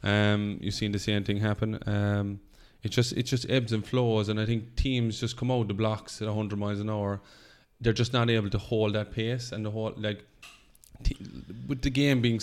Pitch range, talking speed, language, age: 100-110 Hz, 220 wpm, English, 20-39